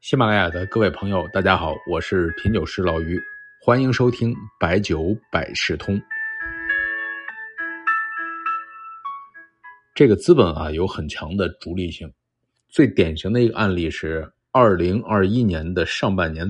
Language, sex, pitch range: Chinese, male, 90-130 Hz